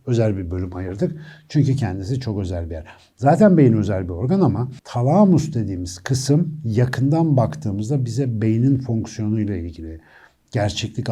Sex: male